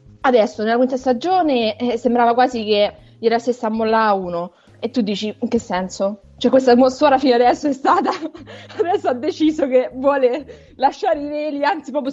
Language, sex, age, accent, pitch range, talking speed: Italian, female, 20-39, native, 210-280 Hz, 180 wpm